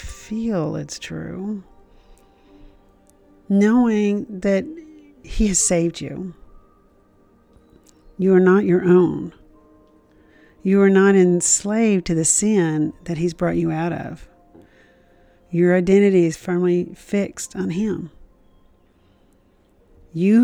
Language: English